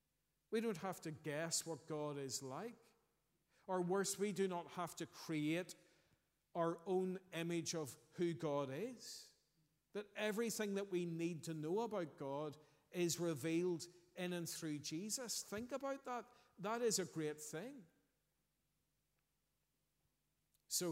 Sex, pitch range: male, 150-180 Hz